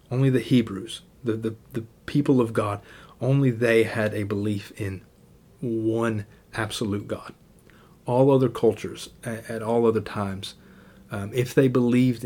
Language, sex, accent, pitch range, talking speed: English, male, American, 105-120 Hz, 140 wpm